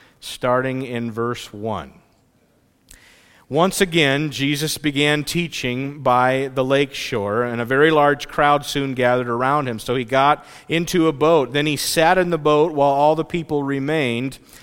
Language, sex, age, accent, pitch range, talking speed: English, male, 50-69, American, 140-170 Hz, 160 wpm